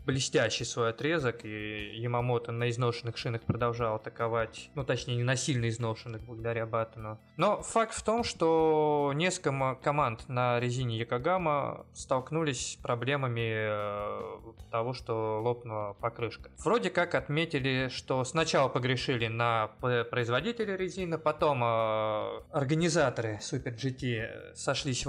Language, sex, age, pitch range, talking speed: Russian, male, 20-39, 115-150 Hz, 115 wpm